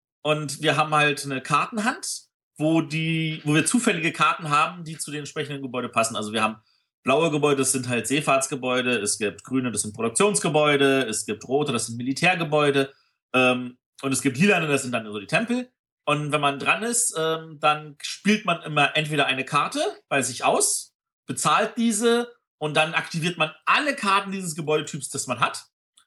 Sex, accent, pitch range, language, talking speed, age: male, German, 135-175 Hz, German, 180 wpm, 40-59